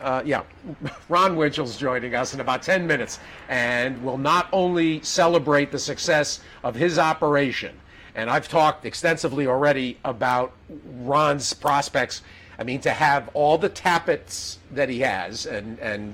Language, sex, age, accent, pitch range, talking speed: English, male, 50-69, American, 135-175 Hz, 150 wpm